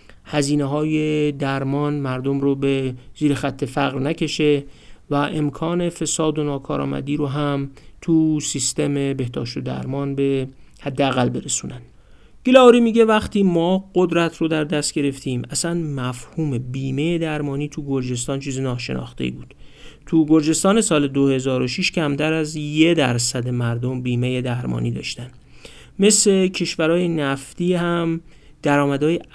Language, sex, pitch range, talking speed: Persian, male, 130-160 Hz, 125 wpm